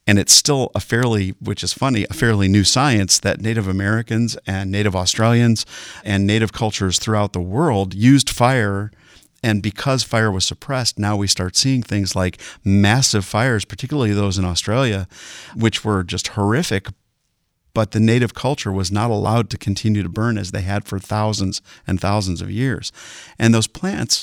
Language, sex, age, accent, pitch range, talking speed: English, male, 40-59, American, 100-115 Hz, 175 wpm